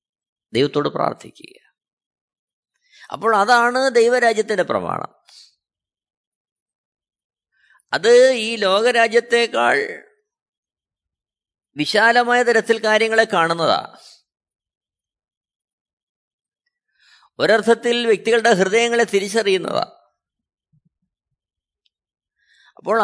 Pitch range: 215-245 Hz